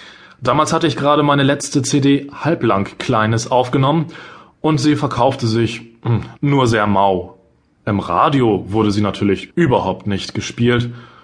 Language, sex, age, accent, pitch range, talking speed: German, male, 30-49, German, 110-155 Hz, 135 wpm